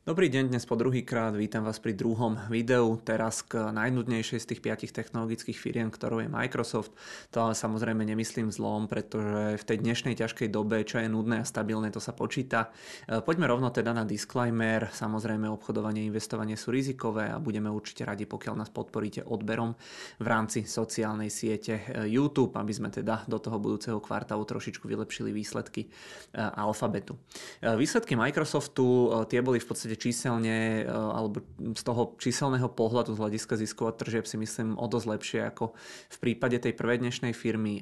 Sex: male